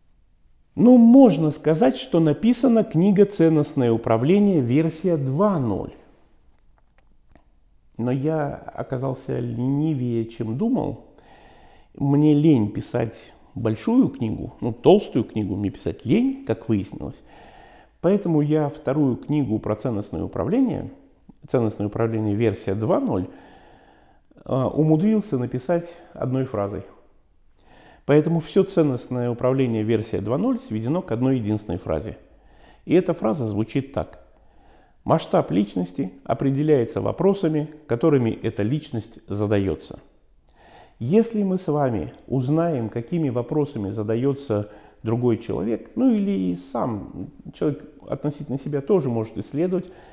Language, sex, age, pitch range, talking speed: Russian, male, 50-69, 110-155 Hz, 105 wpm